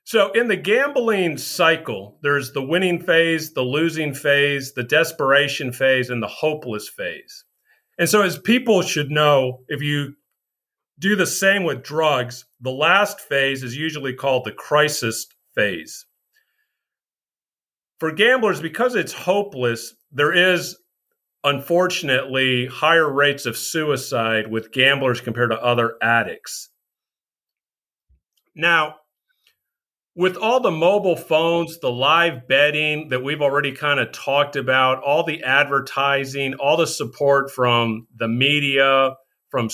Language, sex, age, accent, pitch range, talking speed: English, male, 50-69, American, 125-165 Hz, 130 wpm